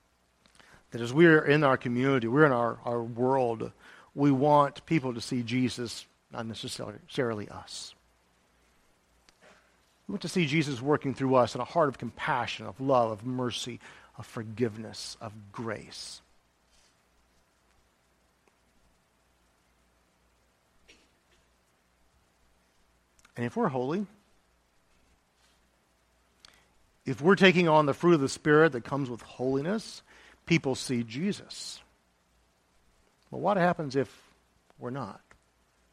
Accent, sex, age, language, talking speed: American, male, 50-69, English, 110 wpm